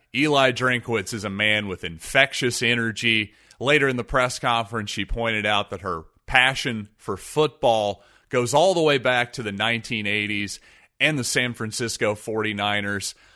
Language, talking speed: English, 155 wpm